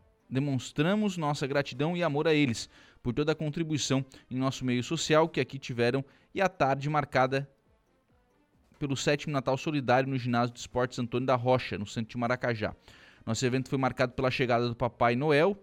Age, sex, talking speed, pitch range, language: 20-39, male, 175 wpm, 120-145 Hz, Portuguese